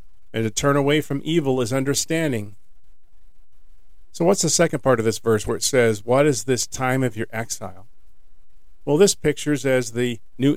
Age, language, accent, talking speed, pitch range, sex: 50-69, English, American, 180 wpm, 105-135 Hz, male